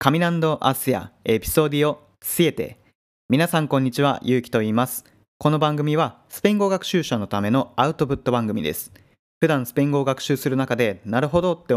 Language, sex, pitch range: Japanese, male, 115-155 Hz